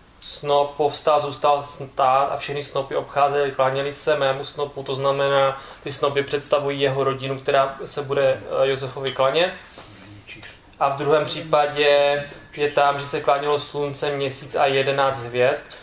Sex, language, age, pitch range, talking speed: male, Czech, 20-39, 135-150 Hz, 145 wpm